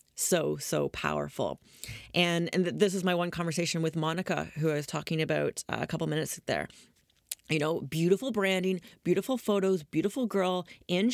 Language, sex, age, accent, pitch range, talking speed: English, female, 30-49, American, 165-205 Hz, 160 wpm